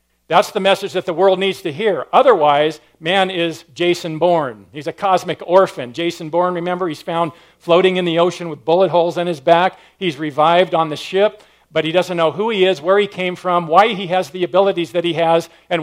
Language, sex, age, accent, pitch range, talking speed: English, male, 50-69, American, 160-195 Hz, 220 wpm